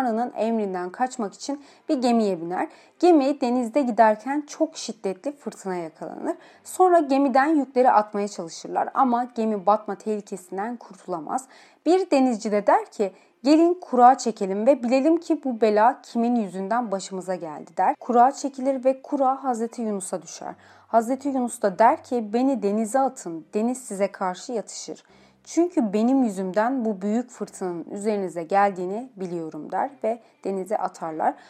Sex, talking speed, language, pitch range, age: female, 140 wpm, Turkish, 200-265 Hz, 30-49